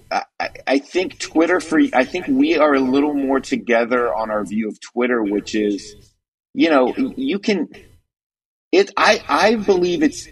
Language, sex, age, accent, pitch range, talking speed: English, male, 30-49, American, 105-140 Hz, 170 wpm